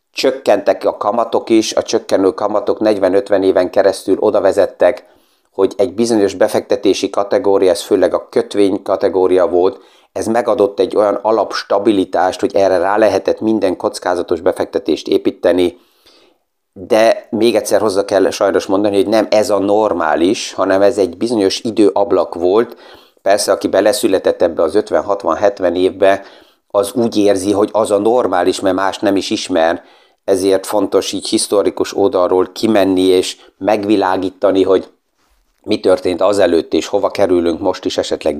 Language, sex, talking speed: Hungarian, male, 145 wpm